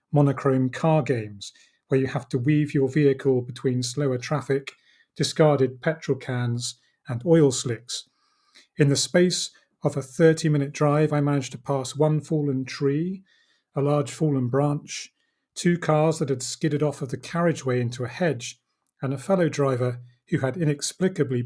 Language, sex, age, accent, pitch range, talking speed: English, male, 40-59, British, 125-150 Hz, 160 wpm